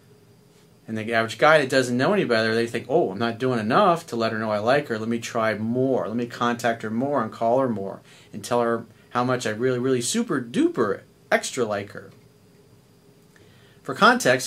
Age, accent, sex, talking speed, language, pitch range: 40-59, American, male, 210 wpm, English, 110-140 Hz